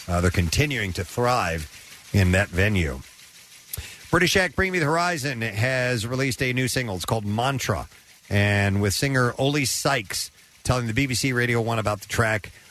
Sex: male